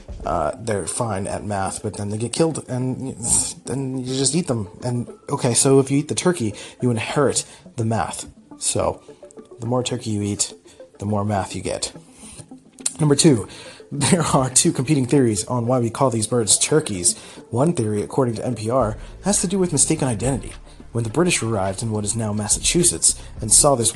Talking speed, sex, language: 190 wpm, male, English